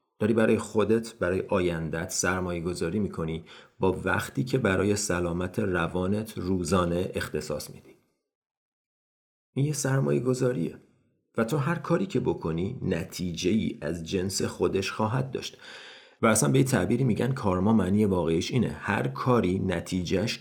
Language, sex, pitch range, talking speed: Persian, male, 85-115 Hz, 135 wpm